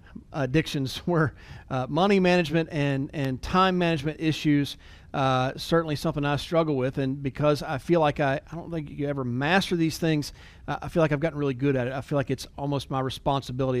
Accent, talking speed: American, 200 wpm